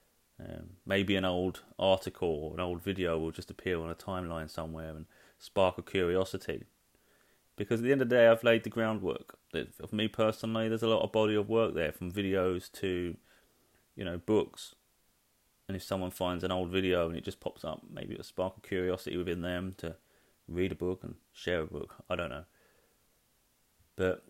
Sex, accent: male, British